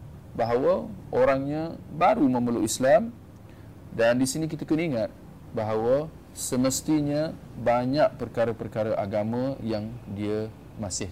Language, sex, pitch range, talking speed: Malay, male, 110-140 Hz, 105 wpm